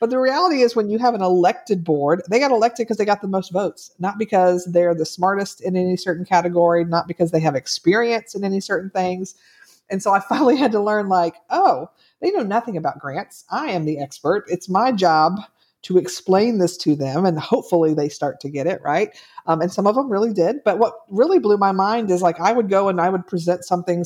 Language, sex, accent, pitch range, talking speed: English, female, American, 165-220 Hz, 235 wpm